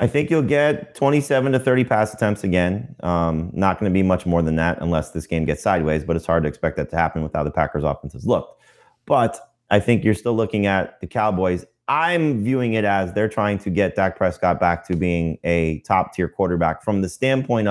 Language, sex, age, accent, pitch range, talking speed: English, male, 30-49, American, 90-115 Hz, 230 wpm